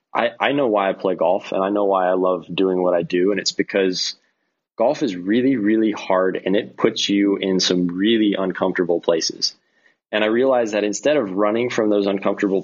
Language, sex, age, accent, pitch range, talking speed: English, male, 20-39, American, 95-105 Hz, 210 wpm